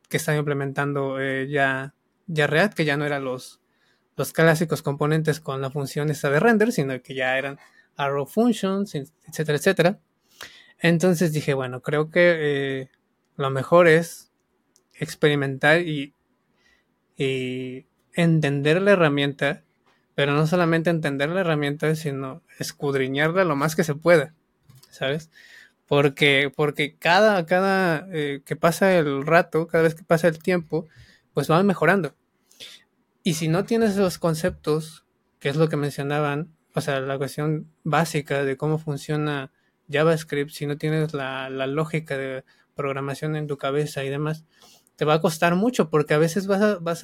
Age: 20-39